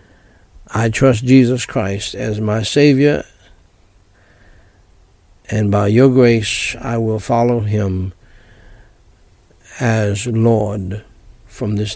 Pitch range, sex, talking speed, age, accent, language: 100-120 Hz, male, 95 wpm, 60-79, American, English